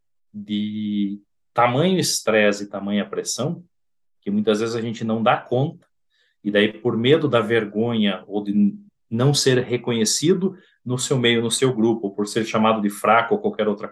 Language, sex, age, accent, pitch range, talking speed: Portuguese, male, 40-59, Brazilian, 110-145 Hz, 175 wpm